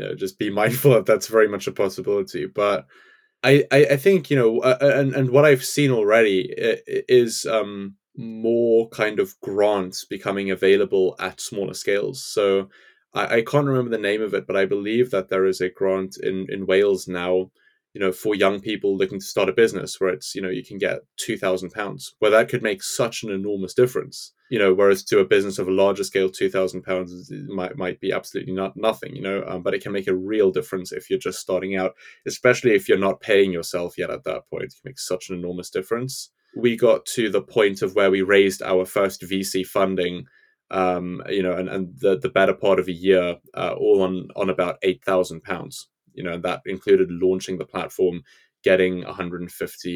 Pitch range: 95-140 Hz